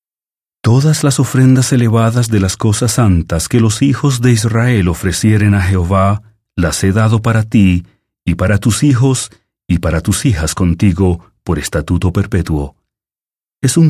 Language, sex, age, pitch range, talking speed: English, male, 40-59, 90-125 Hz, 150 wpm